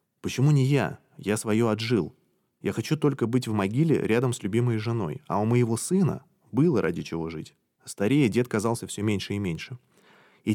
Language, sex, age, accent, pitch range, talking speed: Russian, male, 20-39, native, 95-120 Hz, 180 wpm